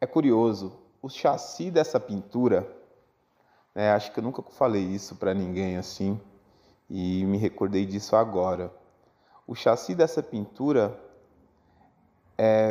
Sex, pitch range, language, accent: male, 100-130 Hz, Portuguese, Brazilian